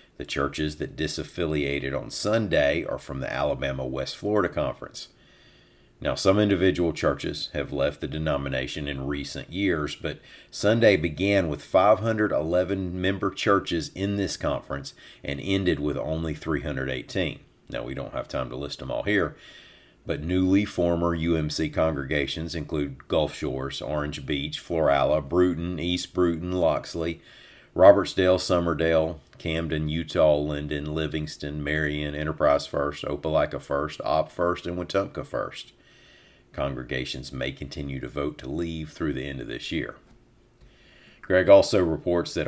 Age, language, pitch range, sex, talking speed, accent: 40-59, English, 75-90 Hz, male, 135 wpm, American